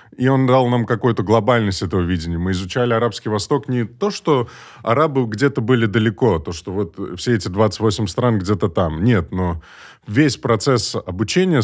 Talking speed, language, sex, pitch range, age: 175 wpm, Russian, male, 90-120 Hz, 20-39